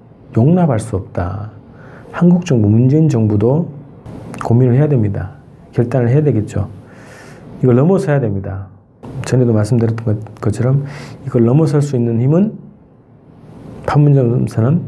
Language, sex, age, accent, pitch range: Korean, male, 40-59, native, 110-140 Hz